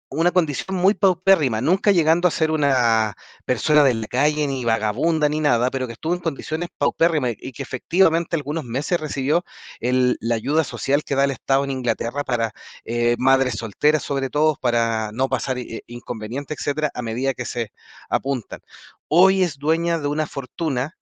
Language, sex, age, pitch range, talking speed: Spanish, male, 30-49, 125-170 Hz, 170 wpm